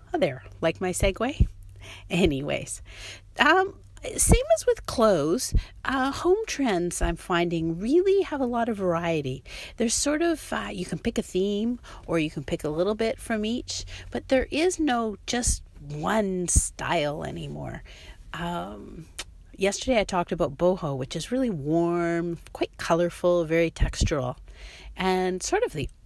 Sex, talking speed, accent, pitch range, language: female, 150 wpm, American, 140-220 Hz, English